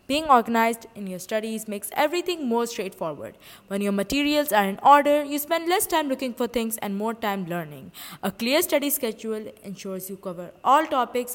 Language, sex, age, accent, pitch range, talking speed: English, female, 20-39, Indian, 205-290 Hz, 185 wpm